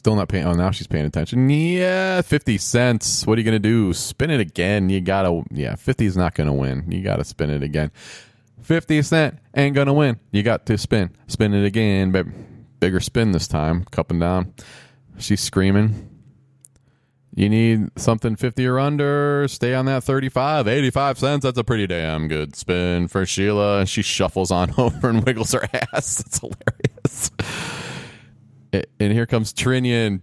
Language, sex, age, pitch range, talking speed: English, male, 30-49, 100-130 Hz, 185 wpm